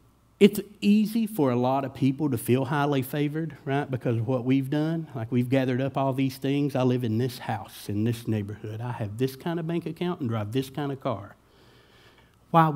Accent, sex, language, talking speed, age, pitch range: American, male, English, 215 wpm, 60-79, 115-145 Hz